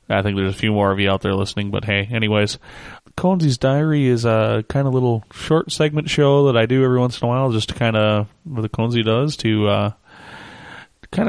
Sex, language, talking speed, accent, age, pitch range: male, English, 235 wpm, American, 30-49, 110-135 Hz